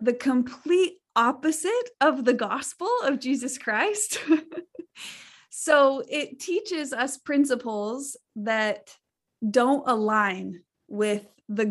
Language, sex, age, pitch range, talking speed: English, female, 20-39, 230-320 Hz, 95 wpm